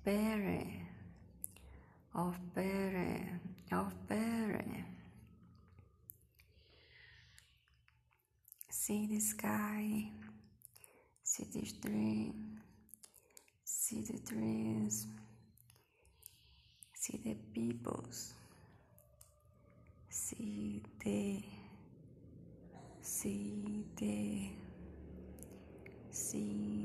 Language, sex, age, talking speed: Portuguese, female, 20-39, 50 wpm